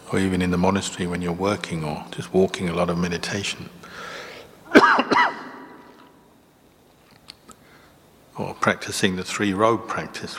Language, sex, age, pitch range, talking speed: English, male, 60-79, 90-95 Hz, 120 wpm